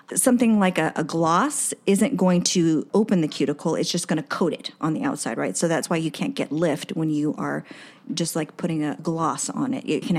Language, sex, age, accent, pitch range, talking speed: English, female, 40-59, American, 160-205 Hz, 235 wpm